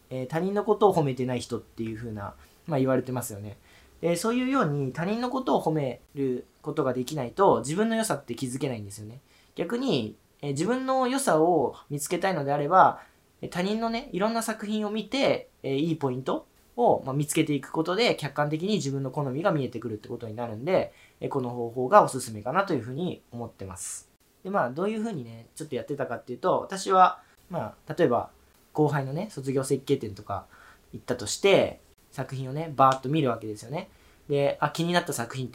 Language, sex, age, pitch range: Japanese, male, 20-39, 120-165 Hz